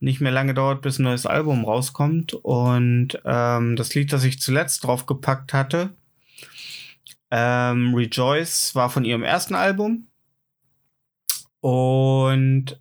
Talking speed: 120 wpm